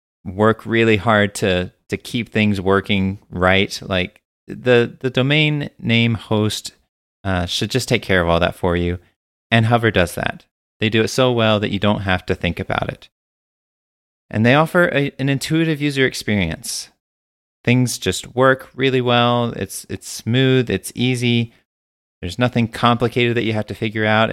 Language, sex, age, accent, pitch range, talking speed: English, male, 30-49, American, 95-125 Hz, 170 wpm